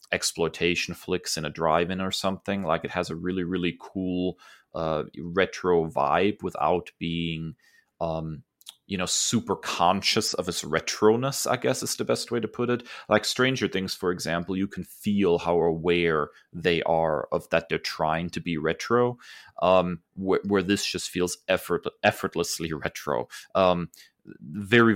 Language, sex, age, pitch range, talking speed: English, male, 30-49, 85-100 Hz, 155 wpm